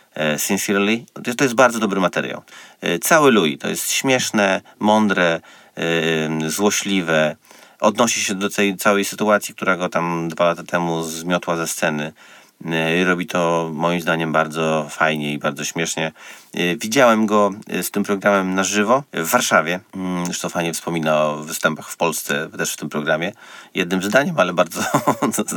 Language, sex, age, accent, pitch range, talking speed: Polish, male, 30-49, native, 80-100 Hz, 145 wpm